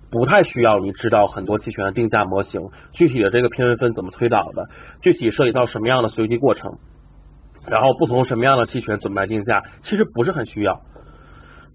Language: Chinese